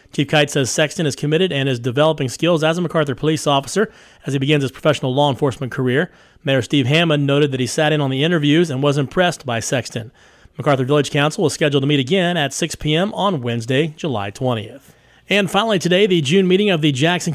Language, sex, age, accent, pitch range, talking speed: English, male, 30-49, American, 140-165 Hz, 220 wpm